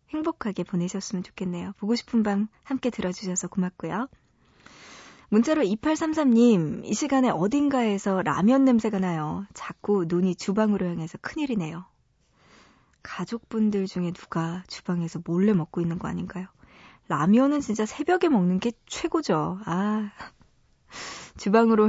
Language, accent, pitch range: Korean, native, 185-250 Hz